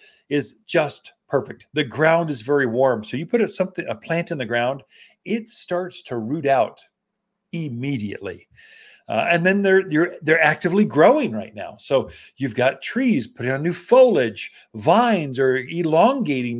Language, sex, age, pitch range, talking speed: English, male, 40-59, 130-215 Hz, 165 wpm